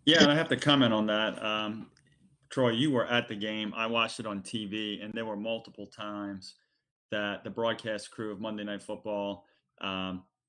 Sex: male